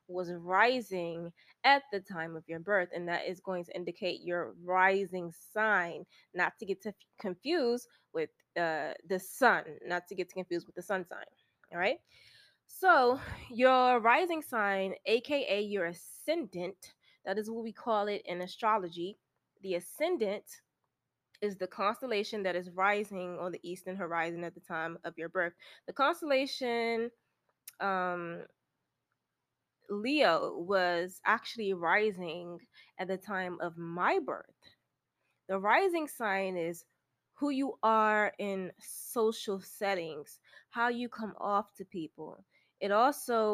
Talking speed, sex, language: 140 wpm, female, English